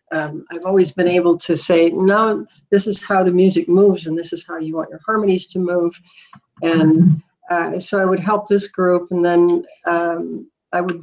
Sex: female